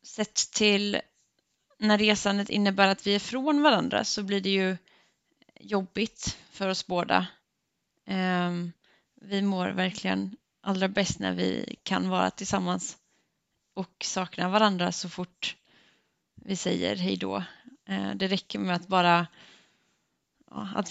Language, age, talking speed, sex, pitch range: Swedish, 20-39, 125 wpm, female, 180-200 Hz